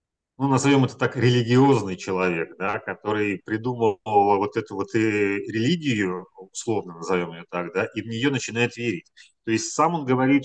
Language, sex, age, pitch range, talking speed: Russian, male, 30-49, 100-130 Hz, 160 wpm